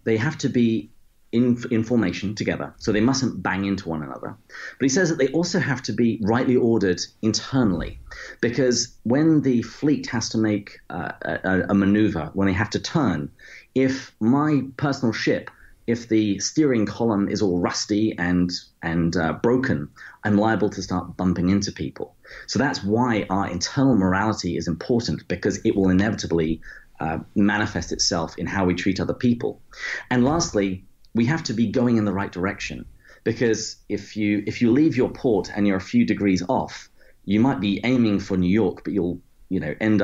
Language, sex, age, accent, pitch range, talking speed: English, male, 30-49, British, 95-120 Hz, 185 wpm